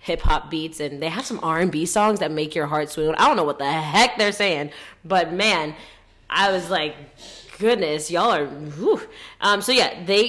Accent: American